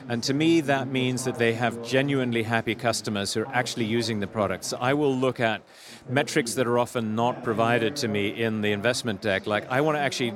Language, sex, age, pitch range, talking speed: English, male, 40-59, 110-135 Hz, 225 wpm